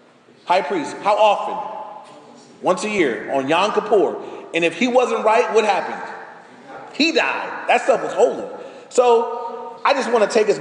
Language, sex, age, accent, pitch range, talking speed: English, male, 30-49, American, 190-245 Hz, 170 wpm